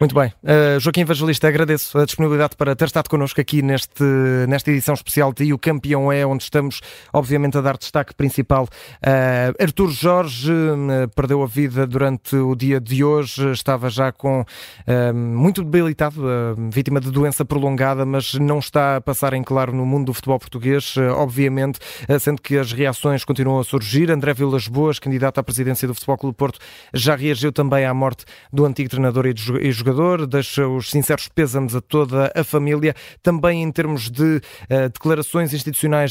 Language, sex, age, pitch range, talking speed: Portuguese, male, 20-39, 135-150 Hz, 170 wpm